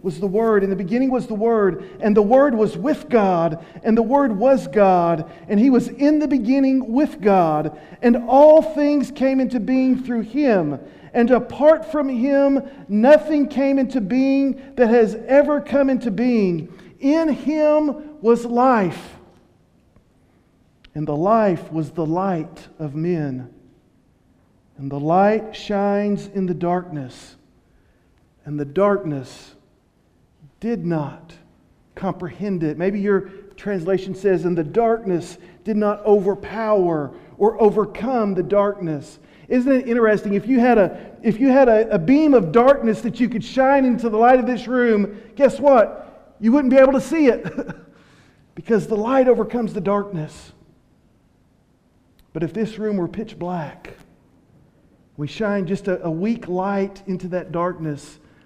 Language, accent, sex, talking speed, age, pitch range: English, American, male, 150 wpm, 50-69, 175-250 Hz